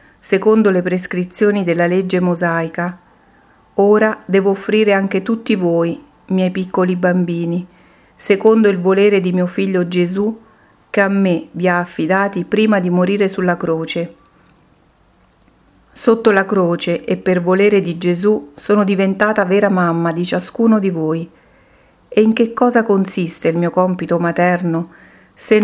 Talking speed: 140 wpm